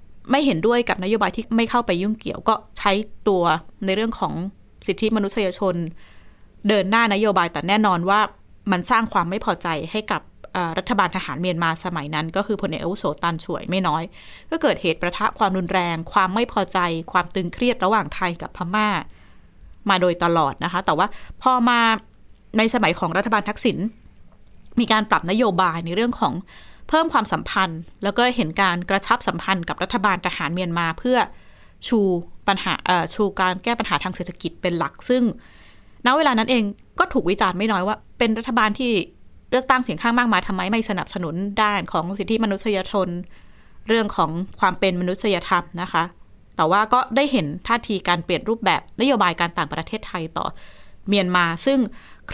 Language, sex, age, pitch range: Thai, female, 20-39, 175-225 Hz